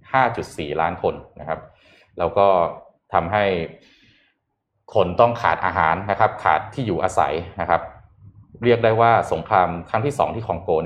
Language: Thai